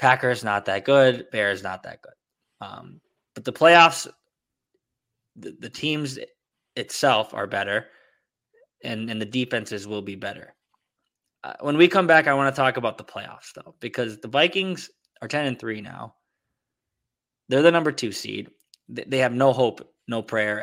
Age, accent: 20-39, American